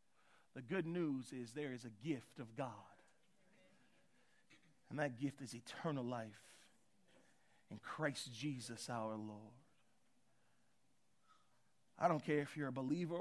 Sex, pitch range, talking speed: male, 125-210 Hz, 125 wpm